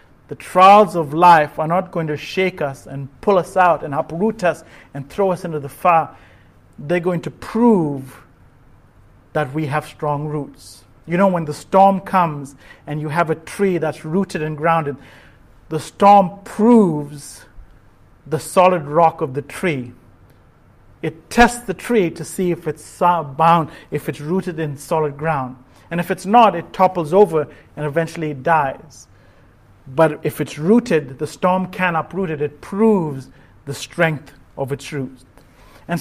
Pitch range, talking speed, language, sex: 145-185 Hz, 165 wpm, English, male